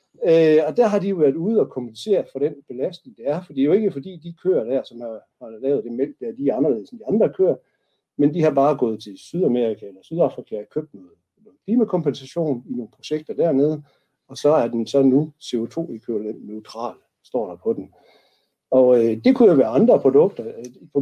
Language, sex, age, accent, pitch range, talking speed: Danish, male, 60-79, native, 130-190 Hz, 225 wpm